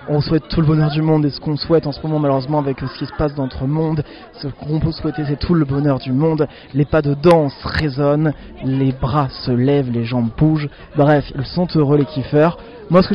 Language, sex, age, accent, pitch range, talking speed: French, male, 20-39, French, 145-175 Hz, 245 wpm